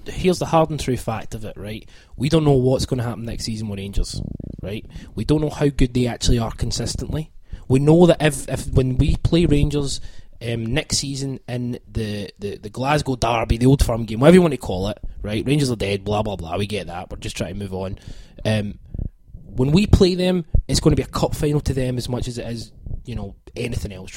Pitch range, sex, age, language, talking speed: 110-145 Hz, male, 20-39, English, 240 wpm